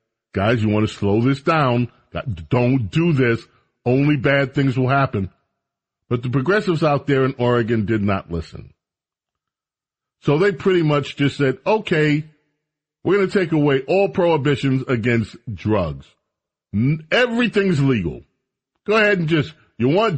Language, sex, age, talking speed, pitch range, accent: English, male, 40-59, 145 wpm, 110-145 Hz, American